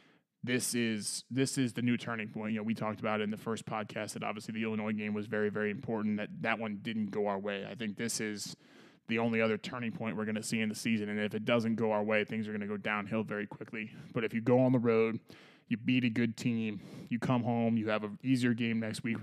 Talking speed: 270 wpm